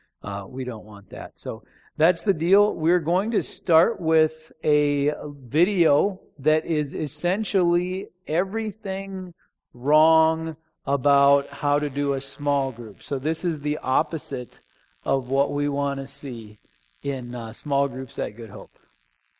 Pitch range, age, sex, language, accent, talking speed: 125-155 Hz, 40-59, male, English, American, 140 wpm